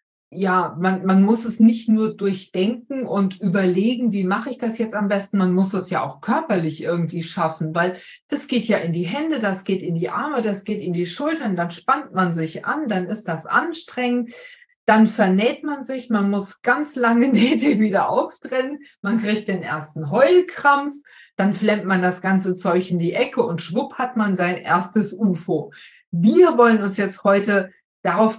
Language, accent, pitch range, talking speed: German, German, 190-245 Hz, 190 wpm